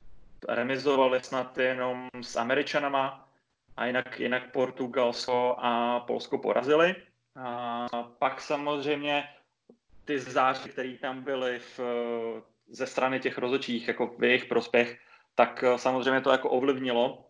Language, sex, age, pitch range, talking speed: English, male, 20-39, 120-130 Hz, 115 wpm